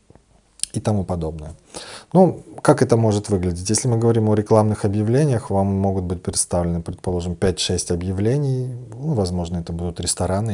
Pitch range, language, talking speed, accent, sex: 90-120 Hz, Russian, 150 wpm, native, male